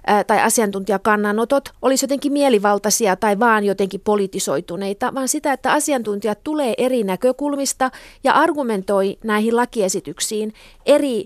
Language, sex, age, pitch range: Finnish, female, 30-49, 215-270 Hz